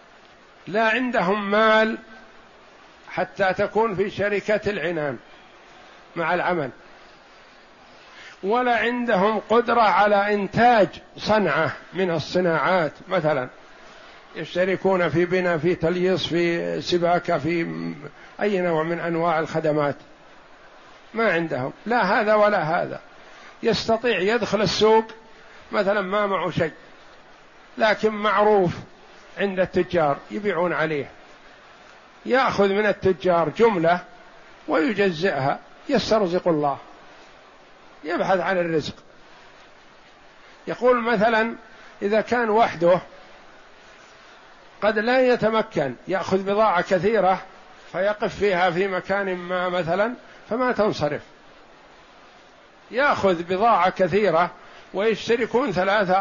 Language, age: Arabic, 60-79